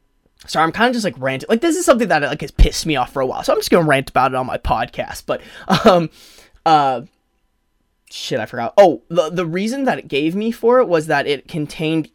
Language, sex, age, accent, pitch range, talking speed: English, male, 20-39, American, 145-195 Hz, 245 wpm